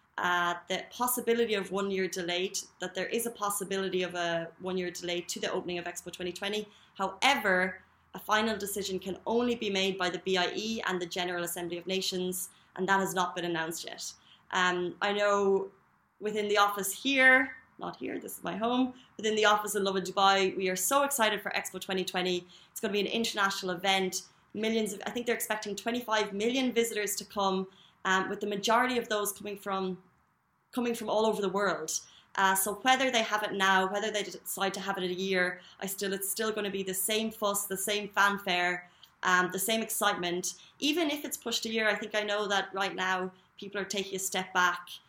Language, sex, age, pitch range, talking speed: Arabic, female, 20-39, 180-210 Hz, 205 wpm